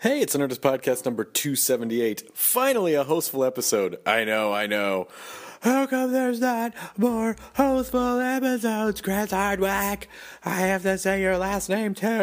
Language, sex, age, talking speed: English, male, 30-49, 150 wpm